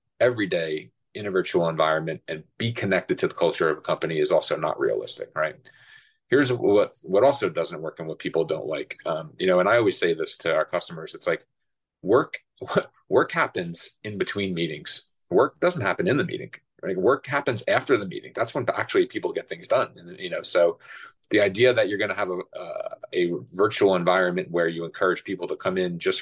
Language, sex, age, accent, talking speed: English, male, 30-49, American, 215 wpm